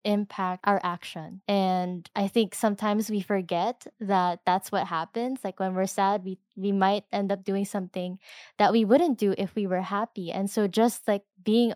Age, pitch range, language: 10-29, 195-225 Hz, English